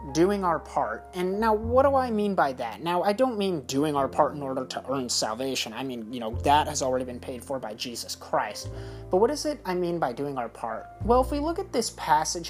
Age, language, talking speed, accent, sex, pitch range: 30-49, English, 255 wpm, American, male, 115-170 Hz